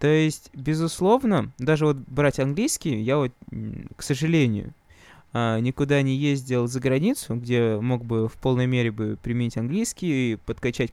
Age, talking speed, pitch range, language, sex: 20-39, 145 wpm, 125-160 Hz, Russian, male